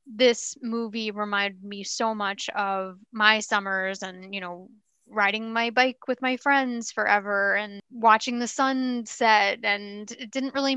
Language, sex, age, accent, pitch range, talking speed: English, female, 20-39, American, 195-240 Hz, 155 wpm